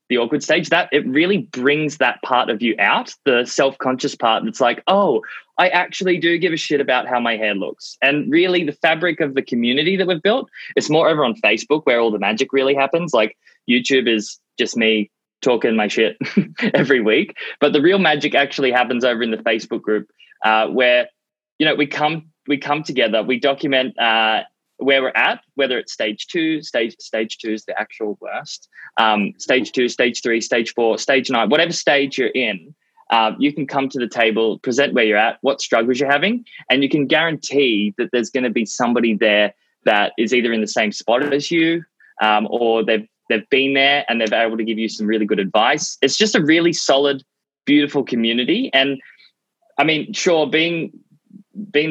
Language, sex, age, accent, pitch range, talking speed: English, male, 20-39, Australian, 120-155 Hz, 205 wpm